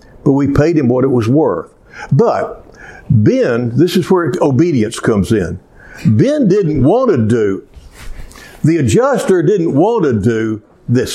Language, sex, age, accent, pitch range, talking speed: English, male, 60-79, American, 120-170 Hz, 150 wpm